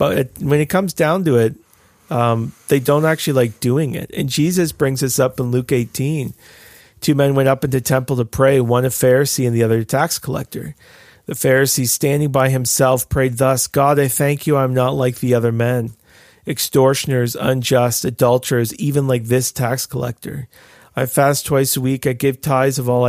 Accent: American